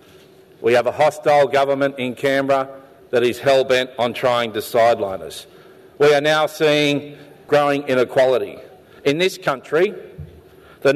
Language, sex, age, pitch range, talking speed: English, male, 50-69, 125-150 Hz, 135 wpm